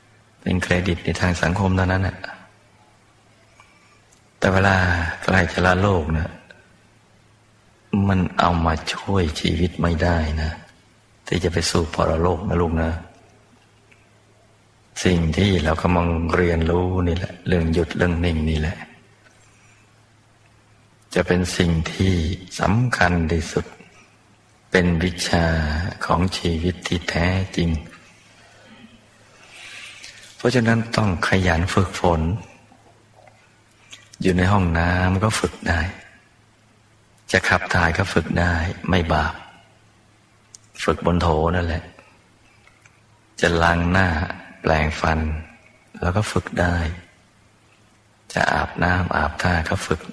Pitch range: 85-105 Hz